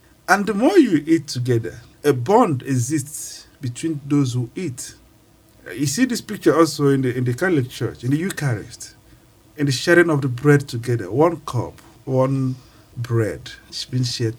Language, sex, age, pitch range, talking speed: English, male, 50-69, 120-175 Hz, 170 wpm